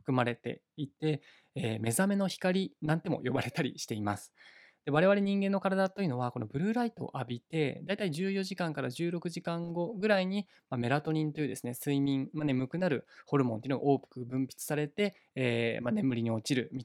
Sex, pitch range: male, 120-155 Hz